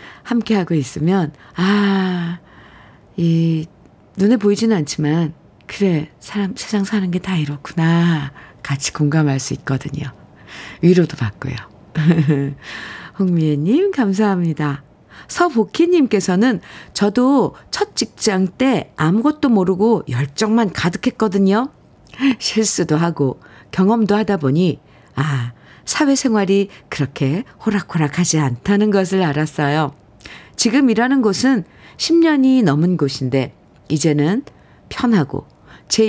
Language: Korean